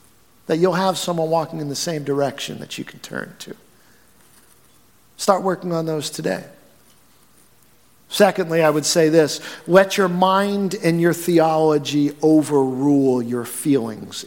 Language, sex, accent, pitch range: English, male, American, 135-175 Hz